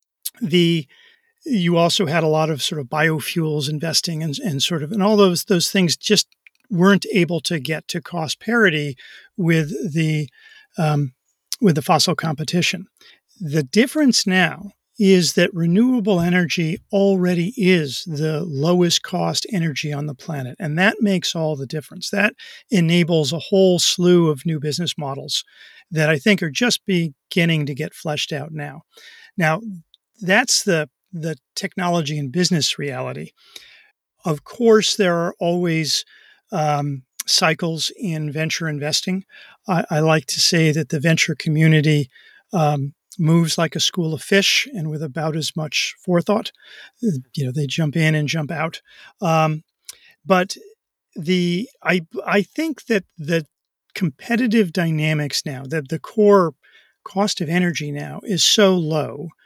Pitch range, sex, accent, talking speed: 155-195 Hz, male, American, 145 wpm